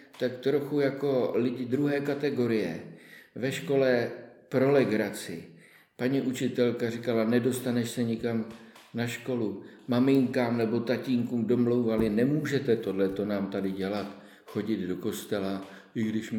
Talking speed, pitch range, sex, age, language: 115 wpm, 95-120 Hz, male, 50-69, Czech